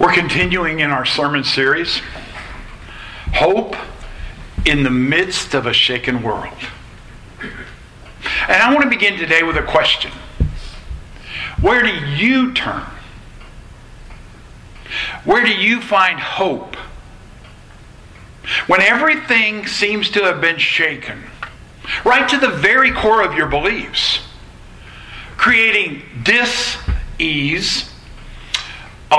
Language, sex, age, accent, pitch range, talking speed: English, male, 60-79, American, 125-195 Hz, 105 wpm